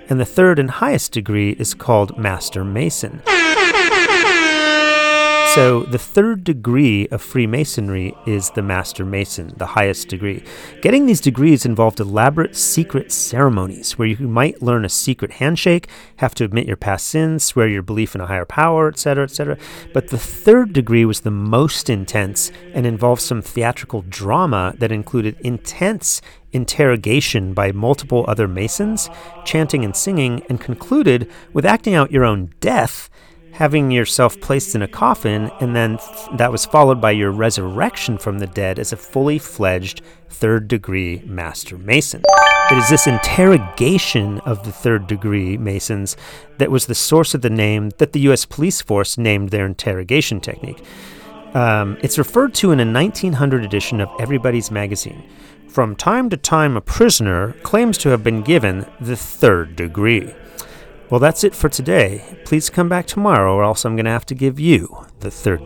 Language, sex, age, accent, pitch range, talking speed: English, male, 30-49, American, 105-150 Hz, 165 wpm